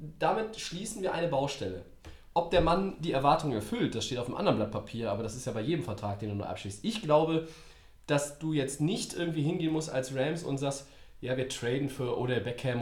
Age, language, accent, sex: 20-39, German, German, male